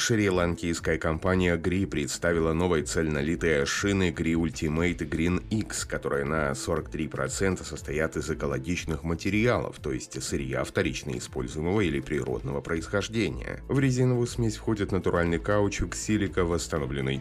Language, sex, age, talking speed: Russian, male, 30-49, 120 wpm